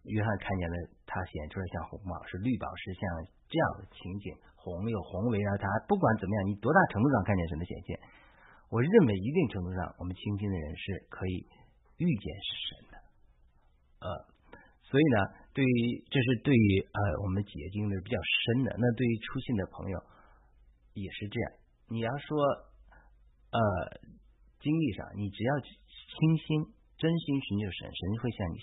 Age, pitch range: 50-69, 95-130 Hz